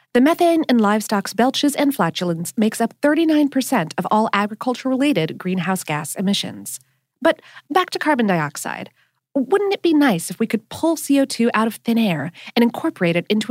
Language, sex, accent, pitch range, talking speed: English, female, American, 180-290 Hz, 170 wpm